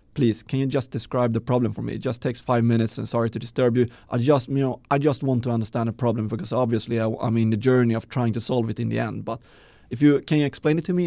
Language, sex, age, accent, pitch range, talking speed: Swedish, male, 30-49, native, 110-145 Hz, 285 wpm